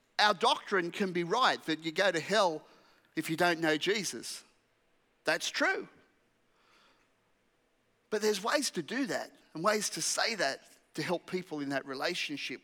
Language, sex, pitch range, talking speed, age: English, male, 160-225 Hz, 160 wpm, 40-59